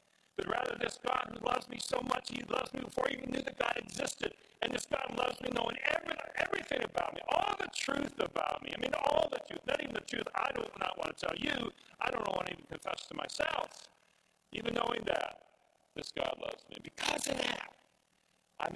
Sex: male